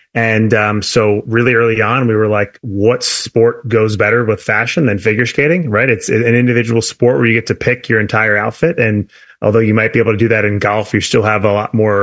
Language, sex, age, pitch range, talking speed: English, male, 30-49, 105-115 Hz, 240 wpm